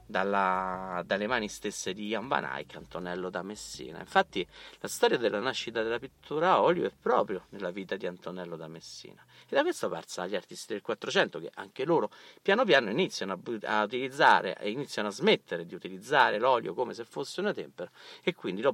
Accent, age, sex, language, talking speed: native, 50-69, male, Italian, 190 wpm